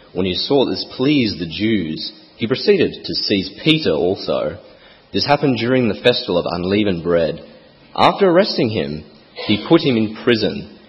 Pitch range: 95-145 Hz